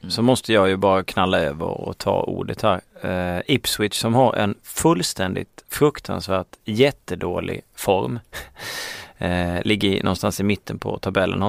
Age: 30-49